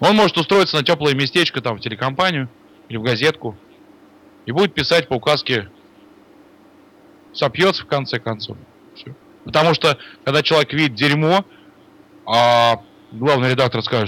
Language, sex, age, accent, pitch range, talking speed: Russian, male, 20-39, native, 115-170 Hz, 135 wpm